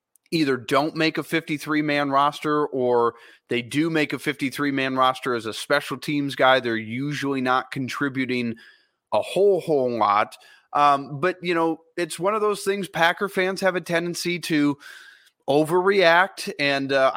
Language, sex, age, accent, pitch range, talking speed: English, male, 30-49, American, 135-165 Hz, 155 wpm